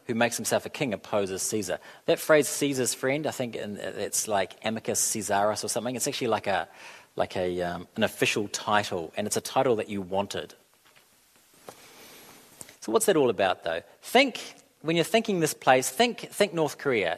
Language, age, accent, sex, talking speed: English, 40-59, Australian, male, 180 wpm